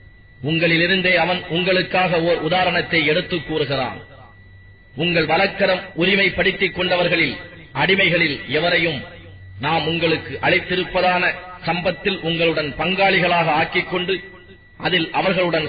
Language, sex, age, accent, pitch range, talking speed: English, male, 30-49, Indian, 150-185 Hz, 85 wpm